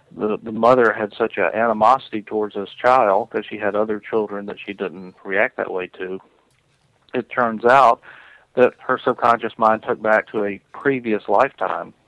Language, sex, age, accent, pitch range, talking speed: English, male, 40-59, American, 105-120 Hz, 175 wpm